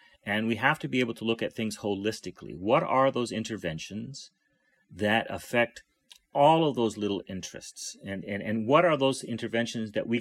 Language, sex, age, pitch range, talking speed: English, male, 40-59, 115-140 Hz, 180 wpm